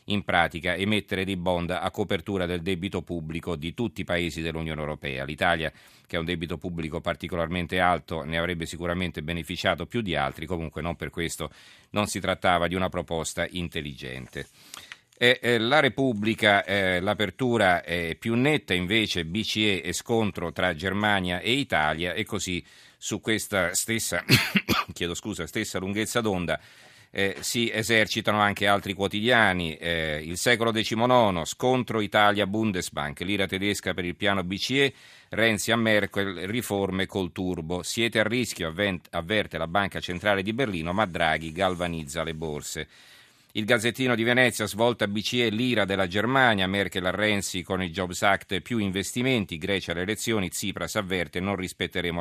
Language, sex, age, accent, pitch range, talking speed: Italian, male, 40-59, native, 85-110 Hz, 155 wpm